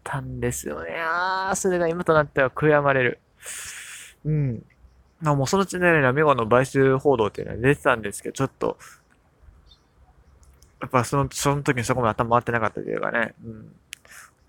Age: 20-39